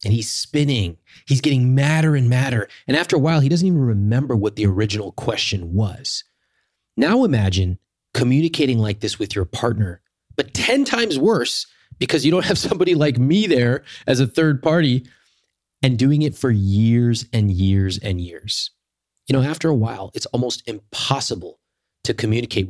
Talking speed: 170 wpm